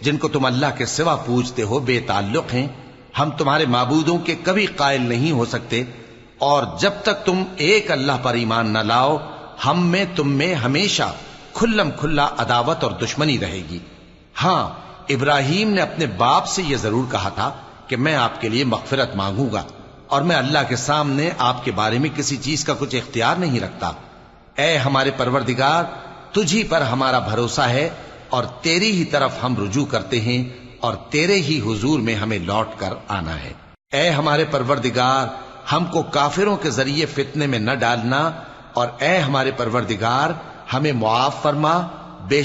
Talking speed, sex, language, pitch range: 170 wpm, male, Arabic, 120-160 Hz